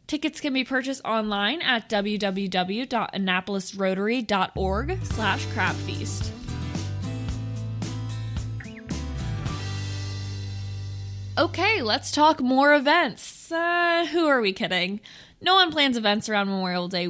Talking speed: 90 wpm